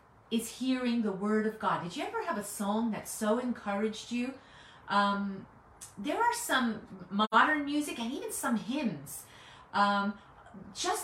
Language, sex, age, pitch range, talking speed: English, female, 30-49, 215-325 Hz, 150 wpm